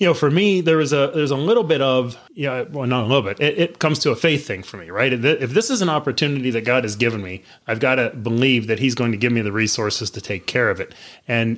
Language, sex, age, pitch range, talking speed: English, male, 30-49, 120-150 Hz, 300 wpm